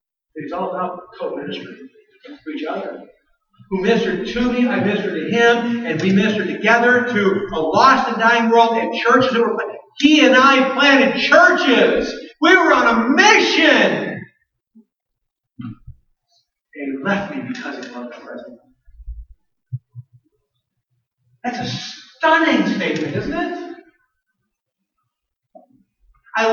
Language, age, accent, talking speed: English, 50-69, American, 120 wpm